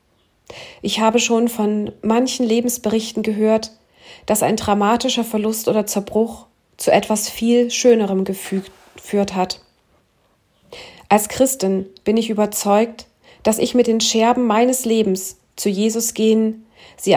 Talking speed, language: 120 wpm, German